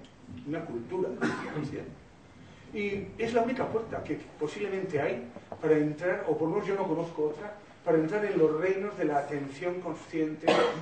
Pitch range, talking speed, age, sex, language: 150-185 Hz, 165 wpm, 40-59, male, Spanish